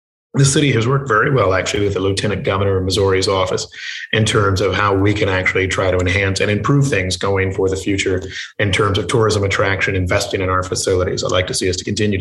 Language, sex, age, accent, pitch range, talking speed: English, male, 30-49, American, 95-110 Hz, 230 wpm